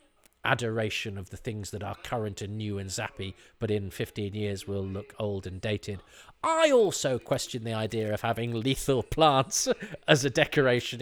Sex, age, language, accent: male, 40-59, English, British